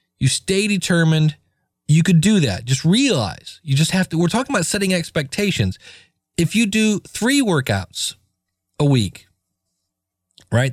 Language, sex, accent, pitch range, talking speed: English, male, American, 100-165 Hz, 145 wpm